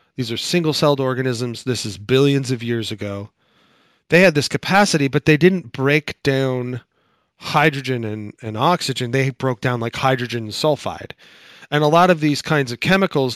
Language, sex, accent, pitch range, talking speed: English, male, American, 125-150 Hz, 170 wpm